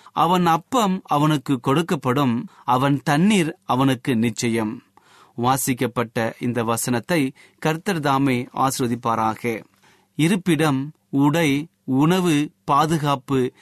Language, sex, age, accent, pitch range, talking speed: Tamil, male, 30-49, native, 130-165 Hz, 75 wpm